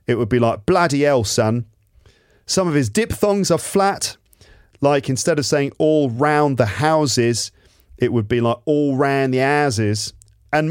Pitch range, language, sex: 105-150 Hz, English, male